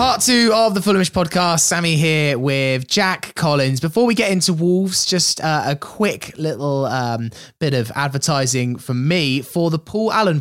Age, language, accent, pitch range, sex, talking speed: 20-39, English, British, 115-145 Hz, male, 180 wpm